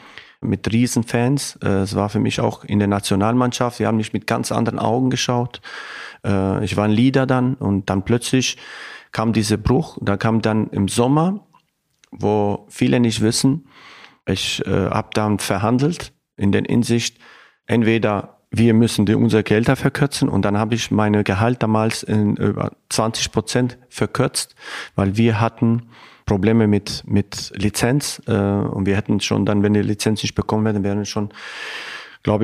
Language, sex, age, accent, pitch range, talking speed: German, male, 40-59, German, 100-120 Hz, 155 wpm